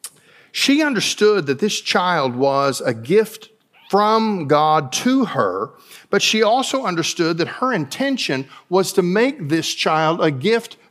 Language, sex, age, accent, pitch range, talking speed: English, male, 50-69, American, 195-260 Hz, 145 wpm